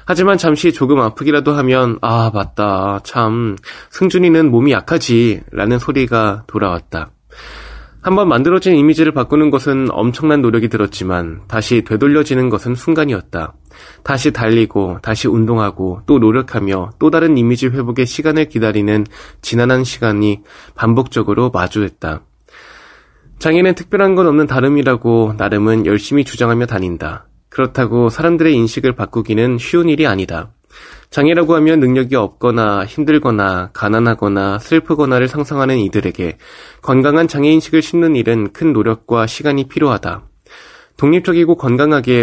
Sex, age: male, 20-39